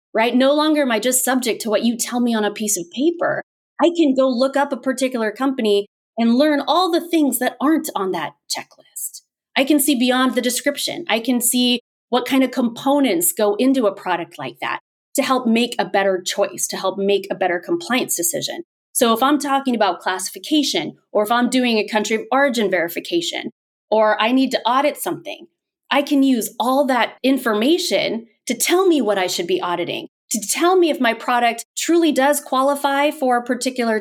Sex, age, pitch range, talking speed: female, 30-49, 205-275 Hz, 200 wpm